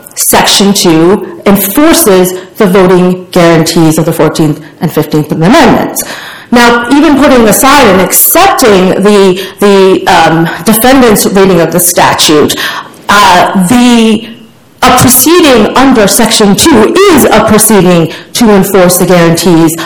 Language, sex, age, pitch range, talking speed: English, female, 40-59, 185-245 Hz, 120 wpm